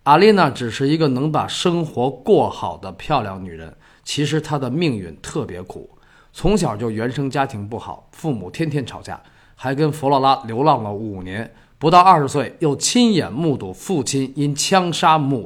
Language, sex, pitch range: Chinese, male, 115-155 Hz